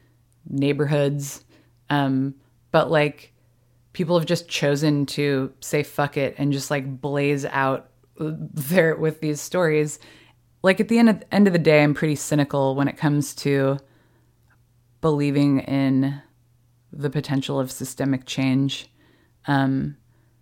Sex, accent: female, American